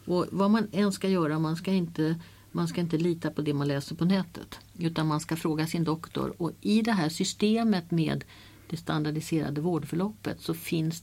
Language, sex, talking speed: Swedish, female, 195 wpm